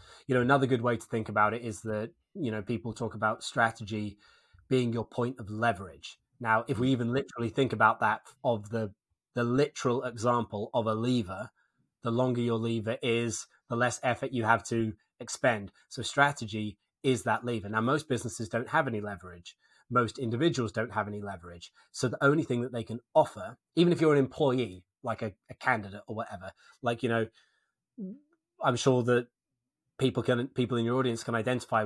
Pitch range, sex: 110-130 Hz, male